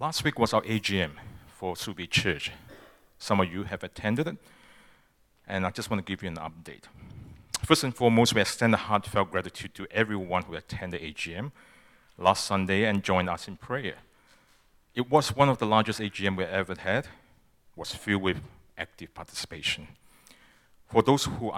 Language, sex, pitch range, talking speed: English, male, 90-110 Hz, 180 wpm